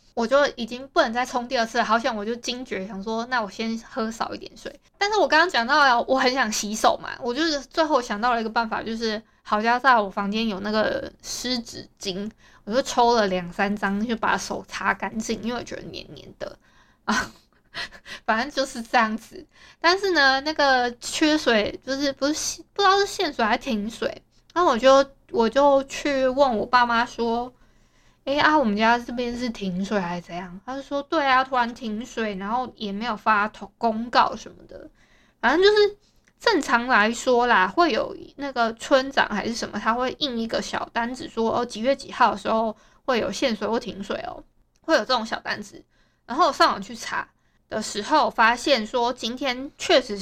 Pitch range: 220-275 Hz